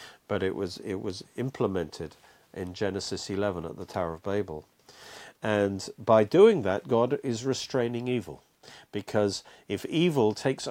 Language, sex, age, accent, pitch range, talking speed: English, male, 50-69, British, 95-120 Hz, 145 wpm